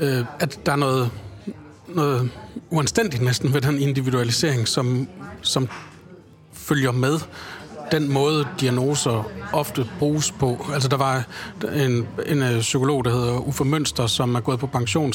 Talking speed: 140 wpm